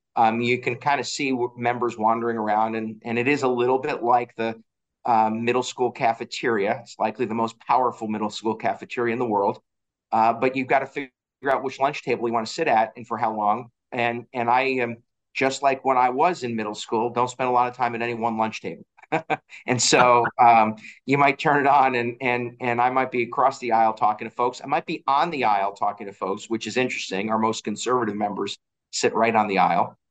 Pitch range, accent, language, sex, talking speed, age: 110-125 Hz, American, English, male, 230 wpm, 40-59